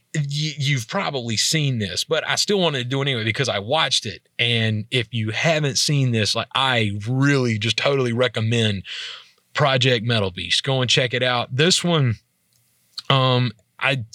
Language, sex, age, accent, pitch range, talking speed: English, male, 30-49, American, 110-135 Hz, 170 wpm